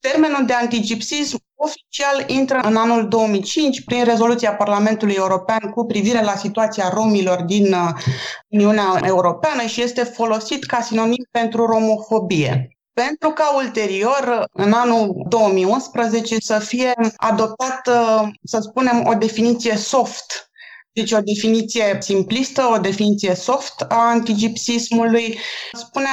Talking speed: 115 wpm